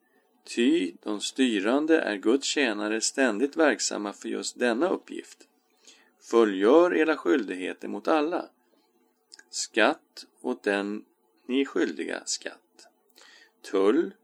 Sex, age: male, 40-59